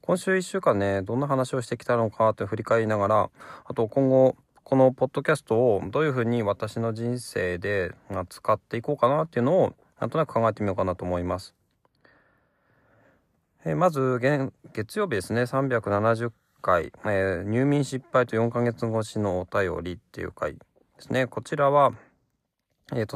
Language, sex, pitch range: Japanese, male, 100-130 Hz